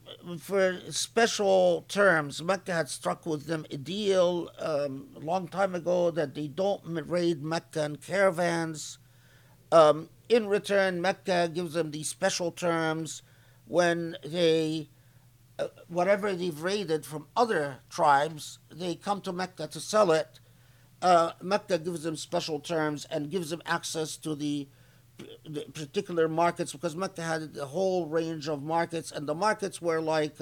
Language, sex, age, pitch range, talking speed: English, male, 50-69, 145-175 Hz, 145 wpm